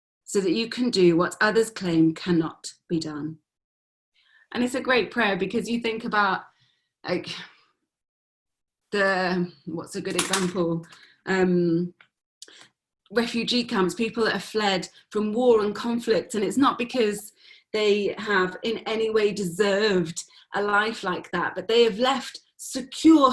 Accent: British